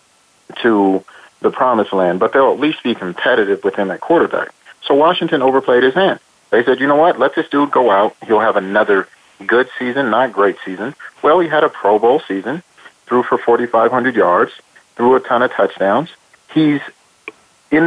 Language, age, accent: English, 40-59, American